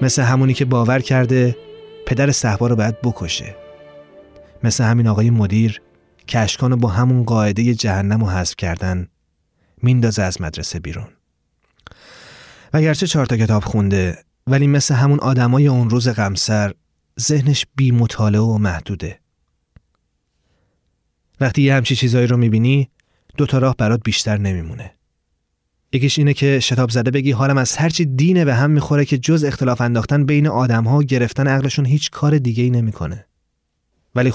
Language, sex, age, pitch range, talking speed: Persian, male, 30-49, 100-140 Hz, 140 wpm